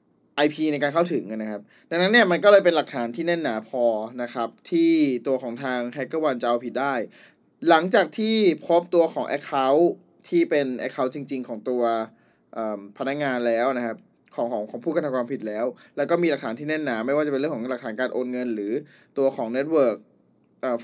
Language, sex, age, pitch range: Thai, male, 20-39, 120-170 Hz